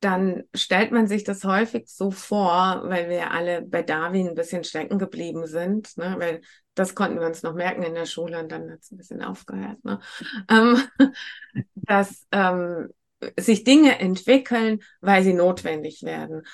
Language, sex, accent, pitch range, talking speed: German, female, German, 185-240 Hz, 170 wpm